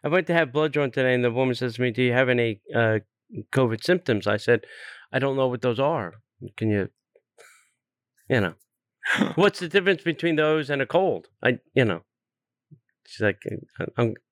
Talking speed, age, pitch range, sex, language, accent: 190 wpm, 40-59, 120-165 Hz, male, English, American